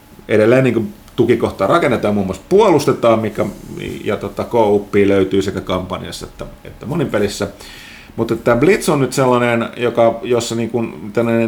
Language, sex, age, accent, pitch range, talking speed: Finnish, male, 30-49, native, 95-120 Hz, 135 wpm